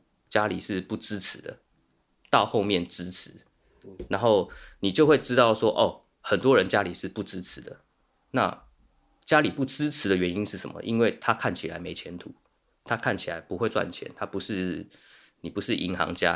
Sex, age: male, 20-39